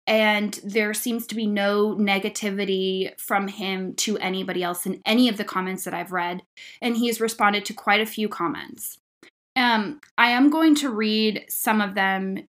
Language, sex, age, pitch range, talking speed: English, female, 10-29, 190-230 Hz, 180 wpm